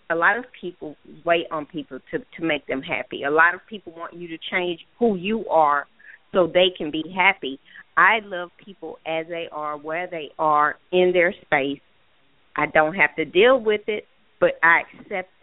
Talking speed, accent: 195 wpm, American